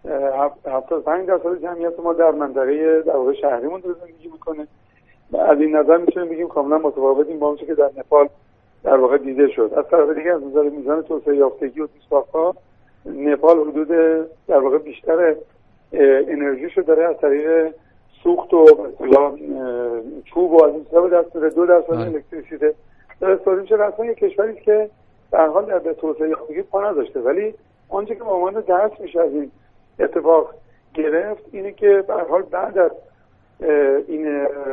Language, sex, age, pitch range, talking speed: Persian, male, 50-69, 140-190 Hz, 135 wpm